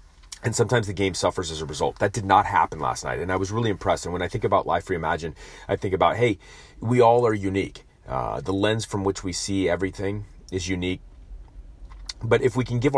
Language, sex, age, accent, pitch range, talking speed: English, male, 30-49, American, 85-110 Hz, 225 wpm